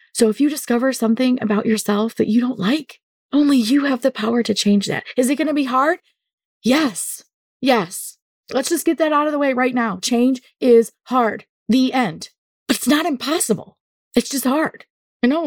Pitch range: 220-270 Hz